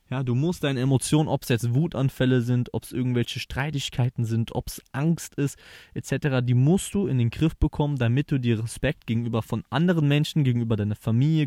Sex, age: male, 20-39